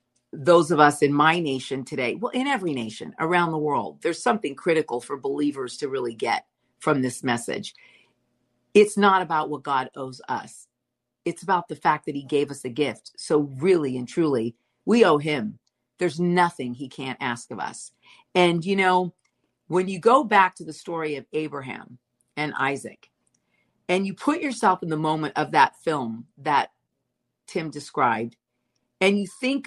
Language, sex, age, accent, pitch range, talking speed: English, female, 50-69, American, 135-175 Hz, 175 wpm